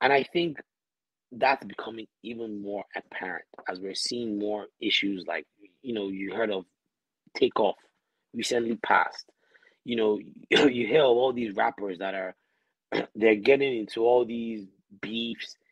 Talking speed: 145 wpm